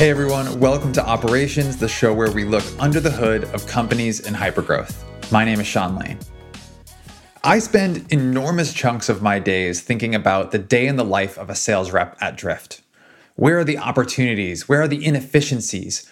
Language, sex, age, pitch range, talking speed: English, male, 20-39, 110-150 Hz, 185 wpm